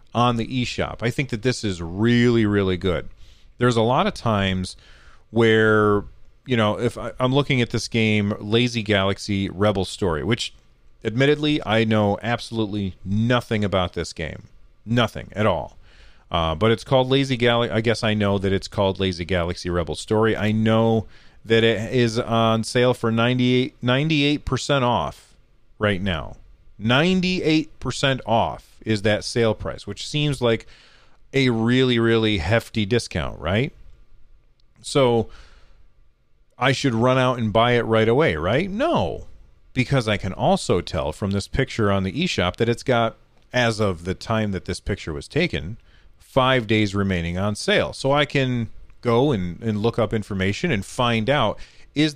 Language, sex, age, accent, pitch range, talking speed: English, male, 30-49, American, 100-125 Hz, 160 wpm